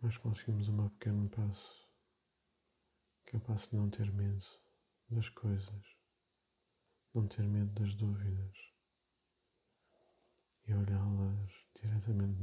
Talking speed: 95 wpm